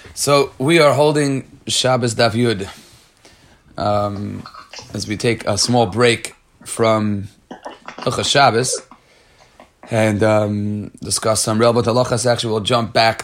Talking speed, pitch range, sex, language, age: 125 wpm, 110-145 Hz, male, Hebrew, 30-49